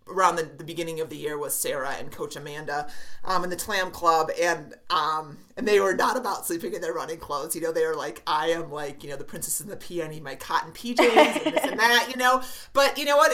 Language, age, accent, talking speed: English, 30-49, American, 265 wpm